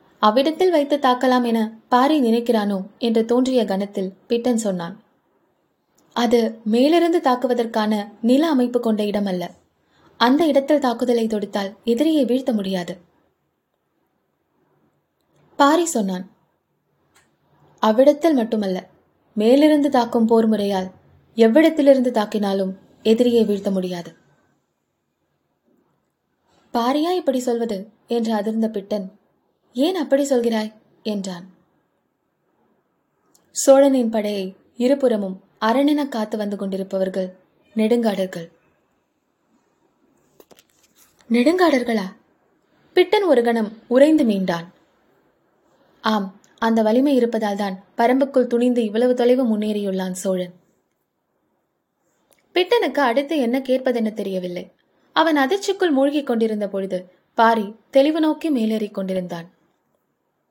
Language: Tamil